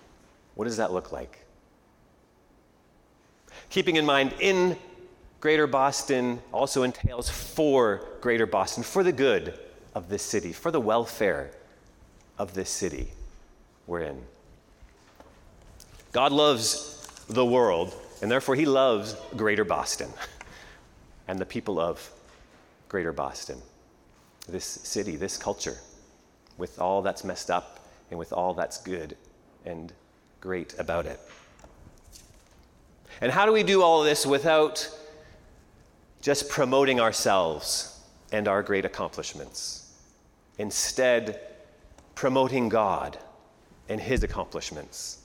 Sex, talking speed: male, 115 wpm